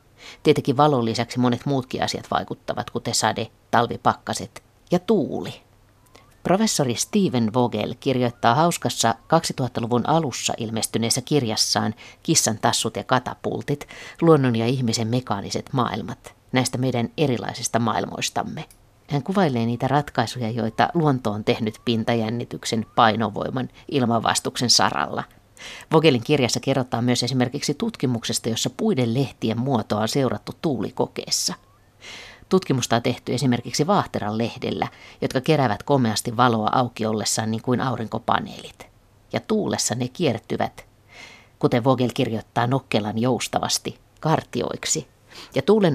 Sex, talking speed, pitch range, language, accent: female, 110 wpm, 115-145 Hz, Finnish, native